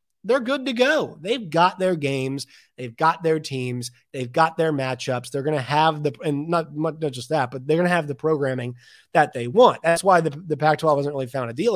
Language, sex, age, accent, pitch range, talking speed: English, male, 30-49, American, 135-190 Hz, 235 wpm